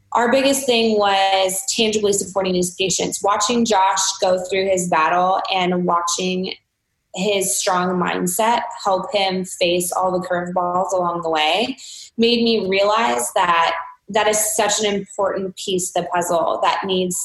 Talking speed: 150 wpm